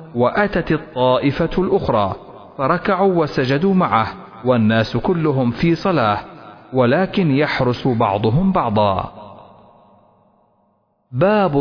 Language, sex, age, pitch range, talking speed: Arabic, male, 40-59, 115-185 Hz, 80 wpm